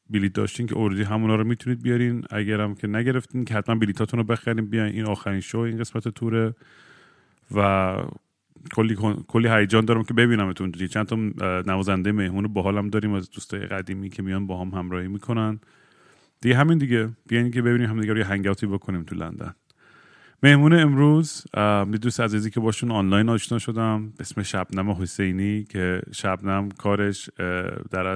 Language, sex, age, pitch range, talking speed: Persian, male, 30-49, 100-115 Hz, 160 wpm